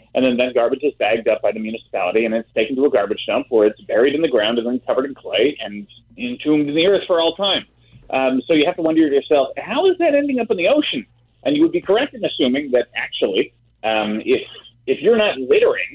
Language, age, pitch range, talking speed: English, 30-49, 120-195 Hz, 250 wpm